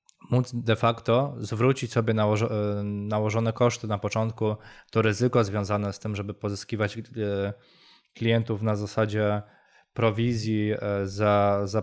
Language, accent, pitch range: Polish, native, 105-120 Hz